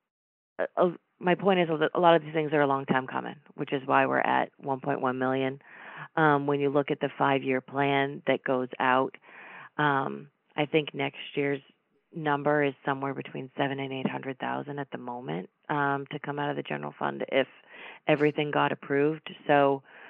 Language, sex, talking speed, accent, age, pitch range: English, female, 180 wpm, American, 30-49, 135-155 Hz